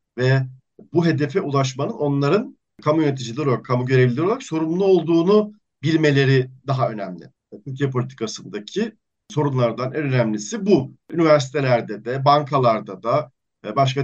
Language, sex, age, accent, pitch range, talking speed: Turkish, male, 50-69, native, 125-150 Hz, 120 wpm